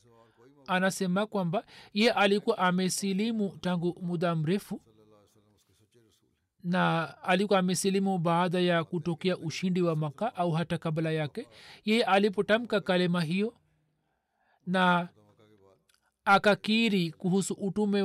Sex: male